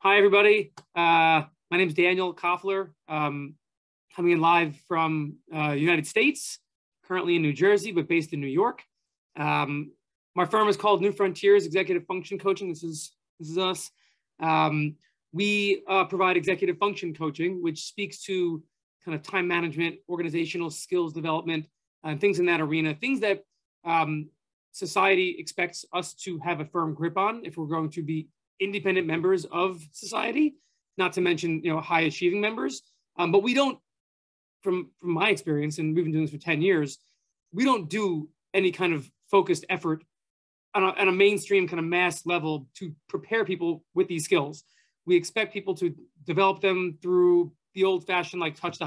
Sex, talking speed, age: male, 175 wpm, 20-39